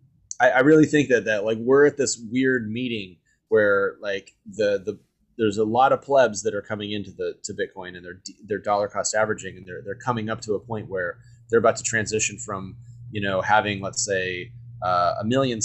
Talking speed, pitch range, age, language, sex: 210 wpm, 100-120 Hz, 30-49, English, male